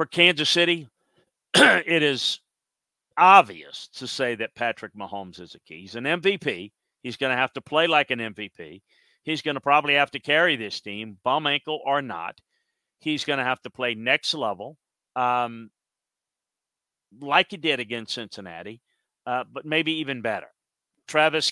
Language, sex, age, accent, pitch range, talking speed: English, male, 50-69, American, 120-155 Hz, 165 wpm